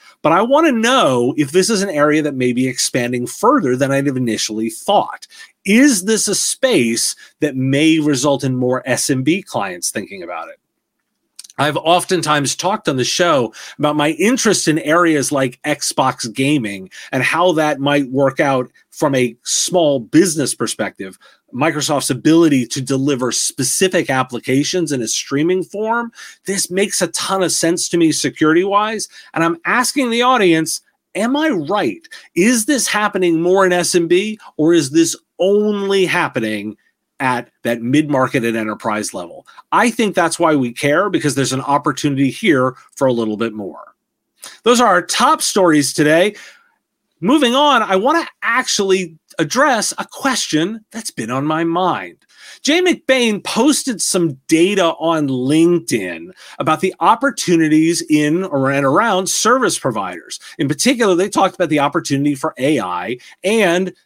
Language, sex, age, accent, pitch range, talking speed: English, male, 30-49, American, 140-195 Hz, 155 wpm